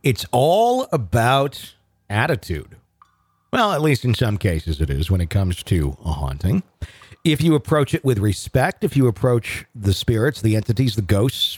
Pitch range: 105-150 Hz